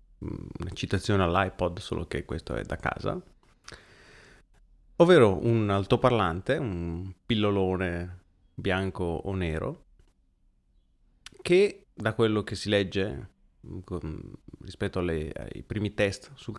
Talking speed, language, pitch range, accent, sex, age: 105 wpm, Italian, 90-115 Hz, native, male, 30-49